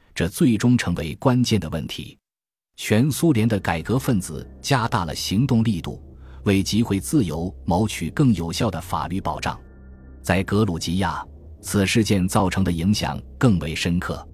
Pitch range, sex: 80-105 Hz, male